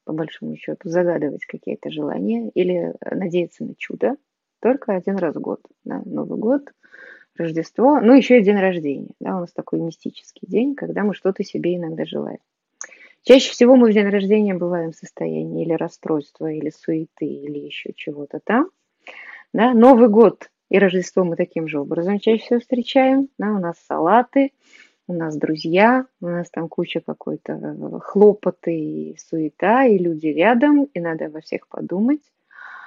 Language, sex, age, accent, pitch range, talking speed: Russian, female, 20-39, native, 165-240 Hz, 160 wpm